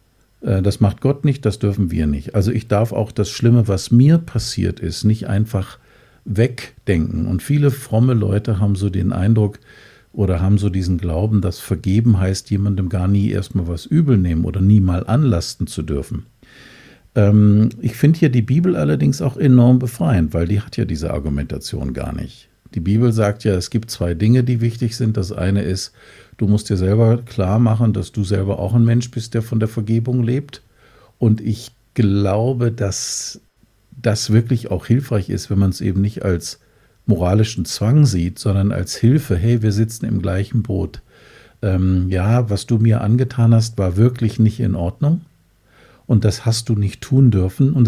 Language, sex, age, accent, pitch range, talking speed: German, male, 50-69, German, 95-120 Hz, 185 wpm